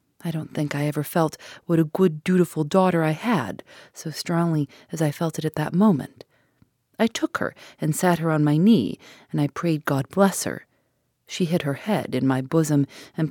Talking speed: 205 wpm